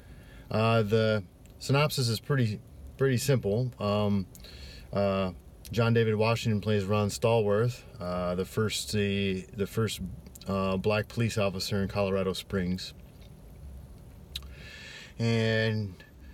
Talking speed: 105 wpm